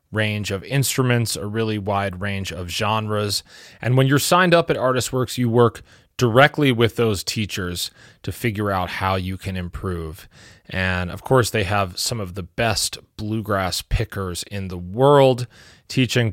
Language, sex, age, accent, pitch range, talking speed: English, male, 30-49, American, 95-125 Hz, 160 wpm